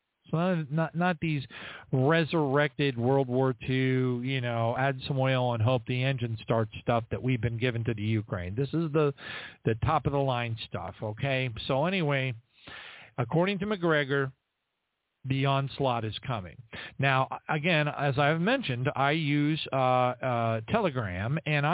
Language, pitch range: English, 125-155 Hz